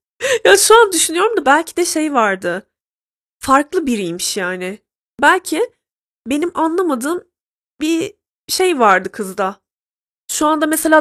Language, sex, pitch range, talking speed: Turkish, female, 220-305 Hz, 120 wpm